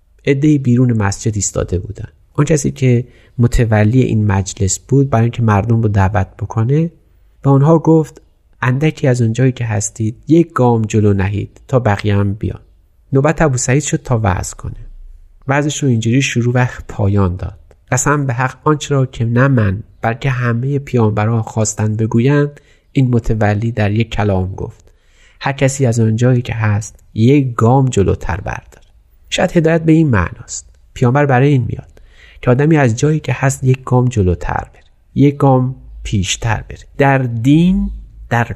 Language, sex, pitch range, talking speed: Persian, male, 105-135 Hz, 160 wpm